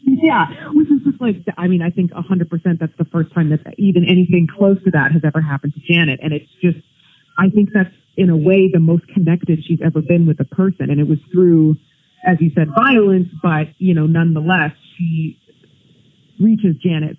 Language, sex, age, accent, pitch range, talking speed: English, female, 30-49, American, 160-195 Hz, 205 wpm